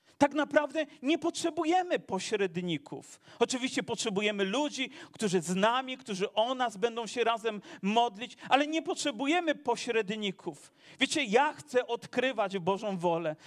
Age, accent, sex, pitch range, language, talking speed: 40-59, native, male, 215-285 Hz, Polish, 125 wpm